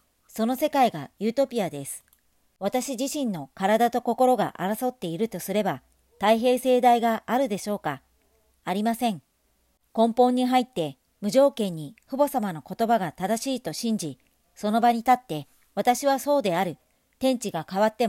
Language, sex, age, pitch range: Japanese, male, 50-69, 185-245 Hz